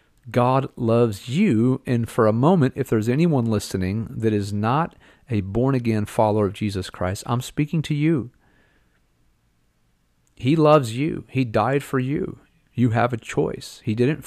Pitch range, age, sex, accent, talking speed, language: 110-145 Hz, 40-59, male, American, 155 wpm, English